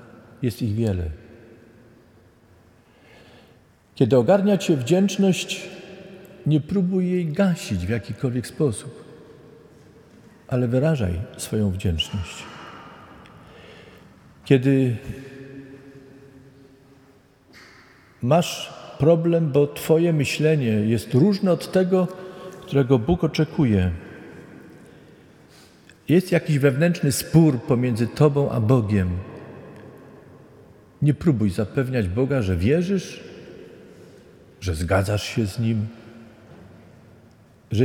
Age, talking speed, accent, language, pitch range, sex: 50-69, 80 wpm, native, Polish, 115-155 Hz, male